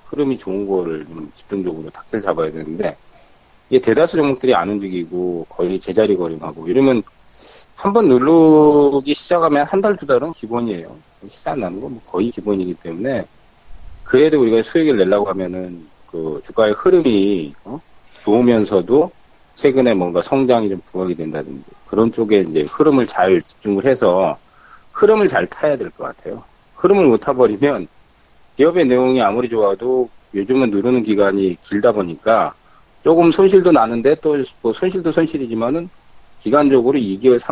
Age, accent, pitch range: 40-59, native, 90-135 Hz